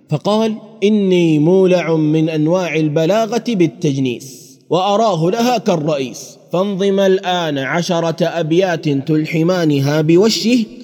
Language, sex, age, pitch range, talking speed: Arabic, male, 30-49, 140-185 Hz, 90 wpm